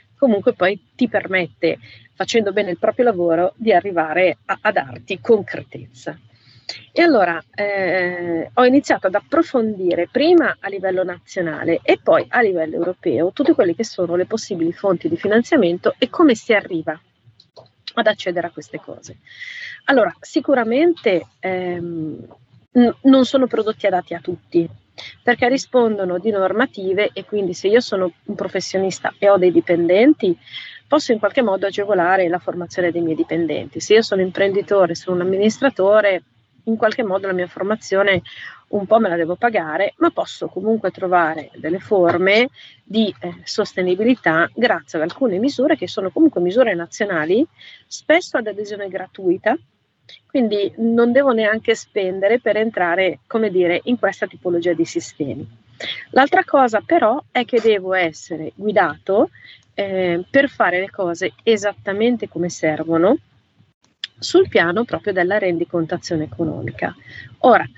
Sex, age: female, 40-59